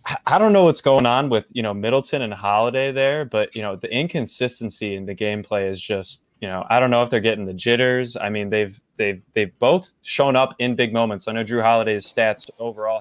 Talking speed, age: 230 wpm, 20-39